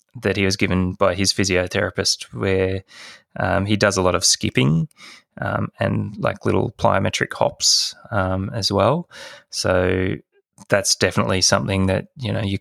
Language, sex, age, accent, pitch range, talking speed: English, male, 20-39, Australian, 95-110 Hz, 150 wpm